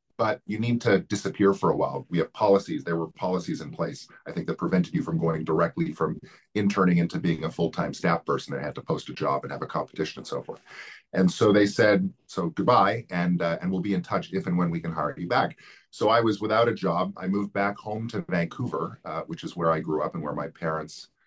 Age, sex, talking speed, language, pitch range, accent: 40-59, male, 250 wpm, English, 85-100 Hz, American